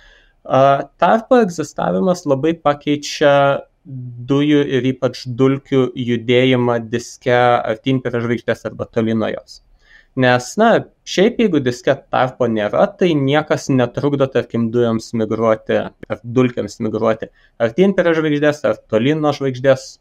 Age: 20-39